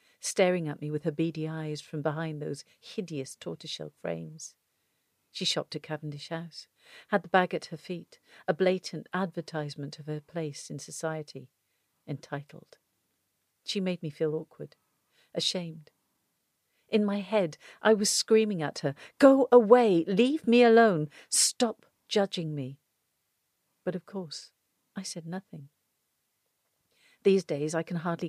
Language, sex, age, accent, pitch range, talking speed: English, female, 50-69, British, 155-190 Hz, 140 wpm